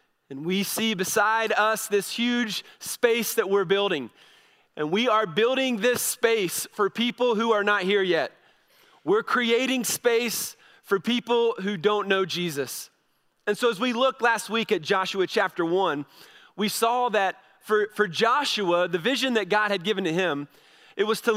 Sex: male